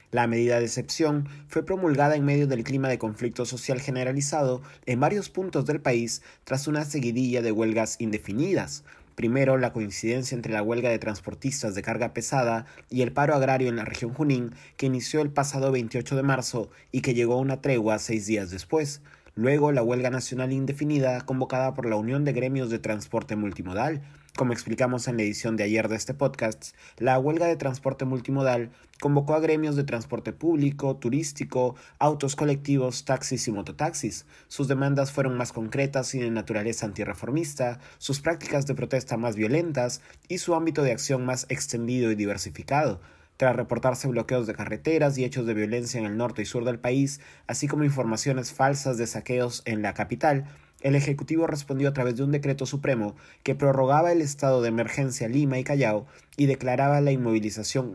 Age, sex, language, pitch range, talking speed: 30-49, male, Spanish, 115-140 Hz, 180 wpm